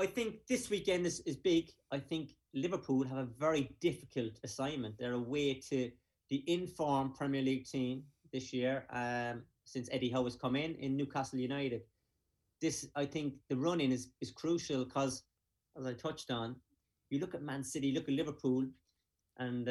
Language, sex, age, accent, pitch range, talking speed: English, male, 30-49, British, 120-140 Hz, 175 wpm